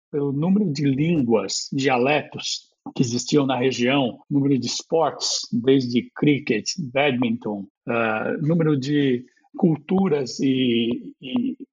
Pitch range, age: 135-175 Hz, 60-79